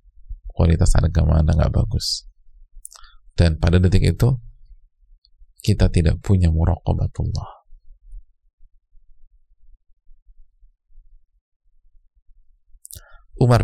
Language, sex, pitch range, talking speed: Indonesian, male, 80-105 Hz, 60 wpm